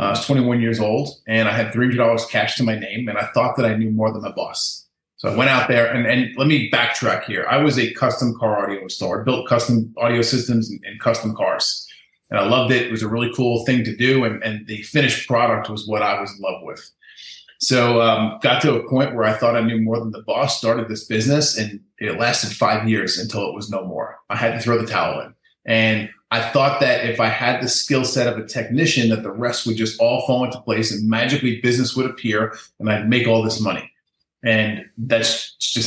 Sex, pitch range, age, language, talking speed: male, 110-125 Hz, 30-49, English, 245 wpm